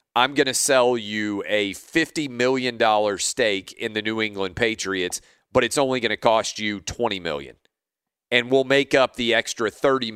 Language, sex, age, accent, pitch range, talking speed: English, male, 40-59, American, 105-140 Hz, 175 wpm